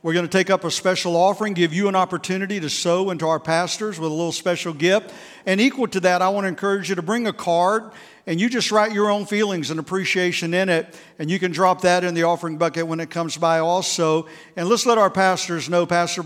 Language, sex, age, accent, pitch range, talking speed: English, male, 50-69, American, 175-220 Hz, 245 wpm